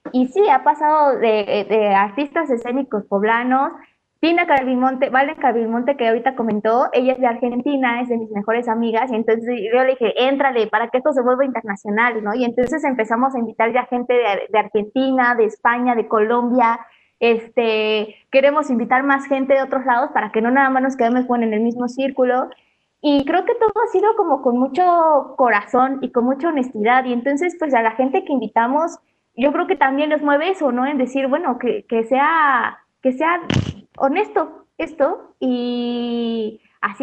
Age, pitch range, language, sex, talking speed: 20-39, 235-300 Hz, Spanish, female, 185 wpm